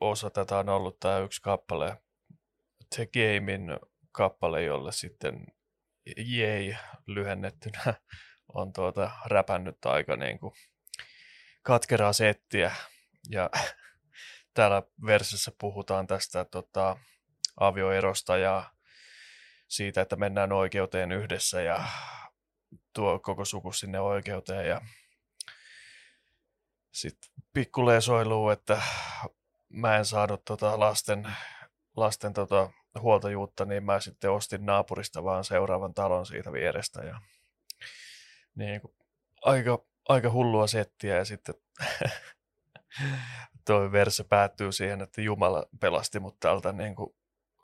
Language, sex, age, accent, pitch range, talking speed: Finnish, male, 20-39, native, 95-110 Hz, 100 wpm